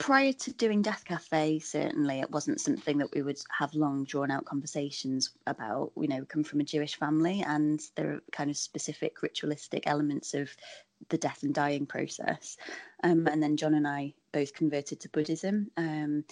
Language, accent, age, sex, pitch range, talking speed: English, British, 20-39, female, 140-165 Hz, 180 wpm